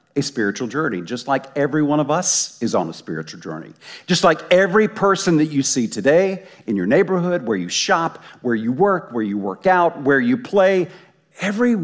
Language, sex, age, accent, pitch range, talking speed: English, male, 50-69, American, 150-195 Hz, 195 wpm